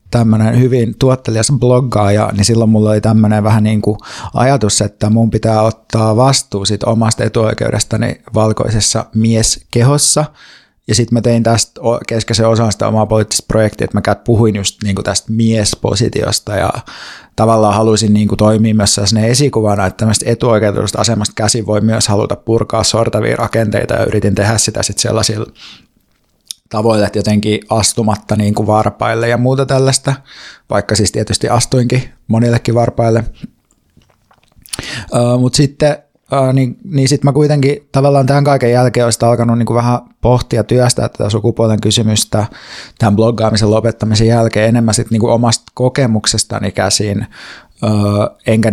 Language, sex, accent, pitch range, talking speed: Finnish, male, native, 105-120 Hz, 145 wpm